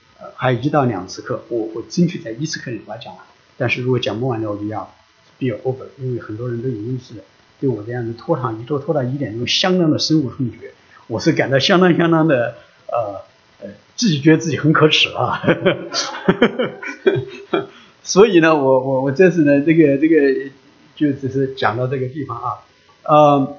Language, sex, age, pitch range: English, male, 50-69, 120-160 Hz